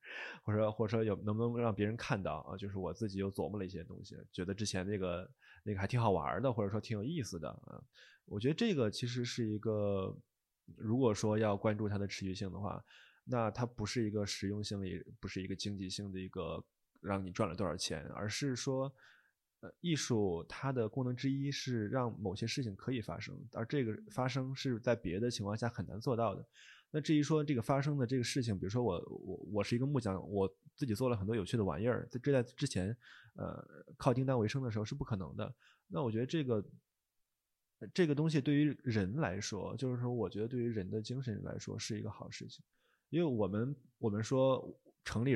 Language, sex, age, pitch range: Chinese, male, 20-39, 100-125 Hz